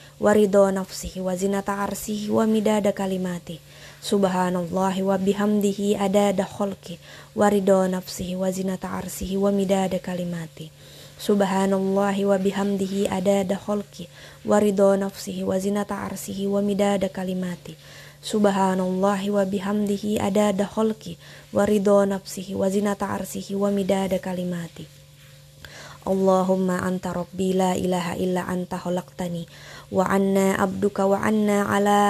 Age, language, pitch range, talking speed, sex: 20-39, Indonesian, 180-200 Hz, 100 wpm, female